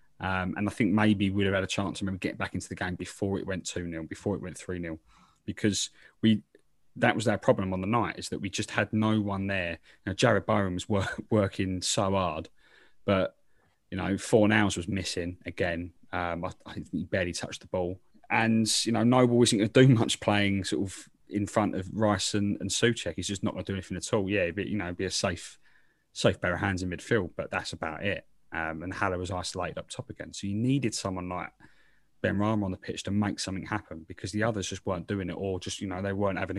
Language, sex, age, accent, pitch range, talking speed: English, male, 20-39, British, 90-105 Hz, 240 wpm